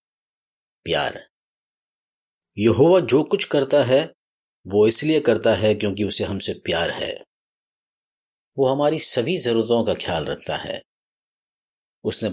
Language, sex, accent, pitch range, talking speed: Hindi, male, native, 105-125 Hz, 115 wpm